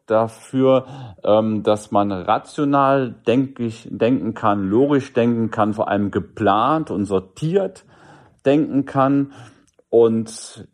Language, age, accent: German, 40-59, German